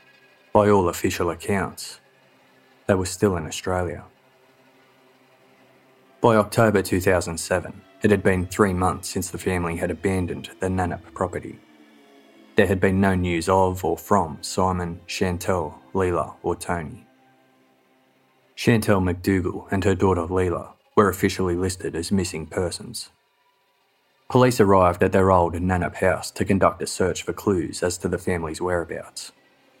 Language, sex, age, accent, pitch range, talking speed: English, male, 20-39, Australian, 85-100 Hz, 135 wpm